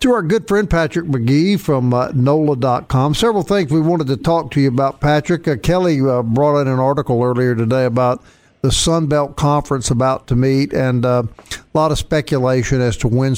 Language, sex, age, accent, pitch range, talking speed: English, male, 50-69, American, 125-165 Hz, 195 wpm